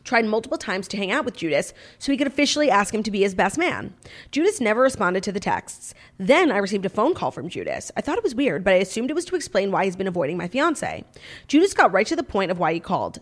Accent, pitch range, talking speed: American, 185-265 Hz, 275 wpm